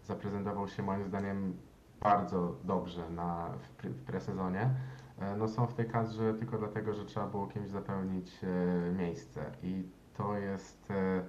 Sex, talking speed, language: male, 135 wpm, Polish